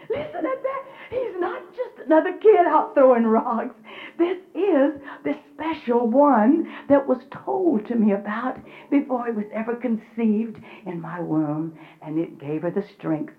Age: 60-79